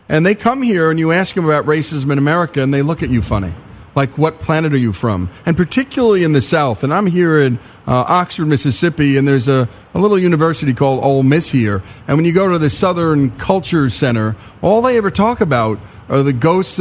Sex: male